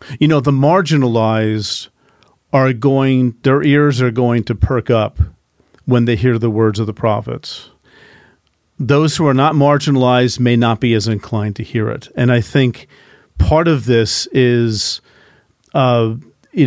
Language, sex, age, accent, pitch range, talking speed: English, male, 40-59, American, 110-130 Hz, 160 wpm